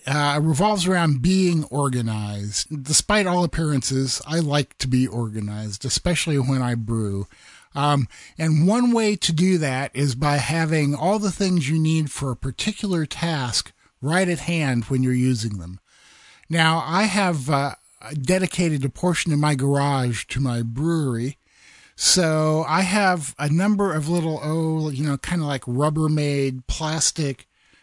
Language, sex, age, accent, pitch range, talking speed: English, male, 50-69, American, 135-170 Hz, 155 wpm